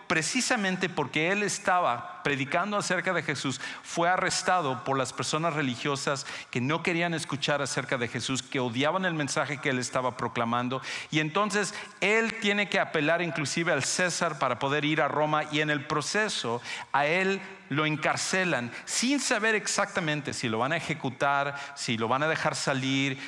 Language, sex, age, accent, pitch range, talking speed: English, male, 50-69, Mexican, 135-185 Hz, 170 wpm